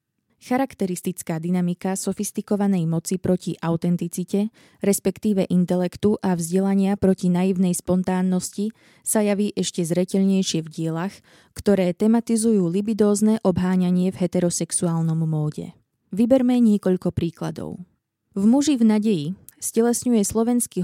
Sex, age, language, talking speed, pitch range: female, 20-39, Slovak, 100 wpm, 175-210 Hz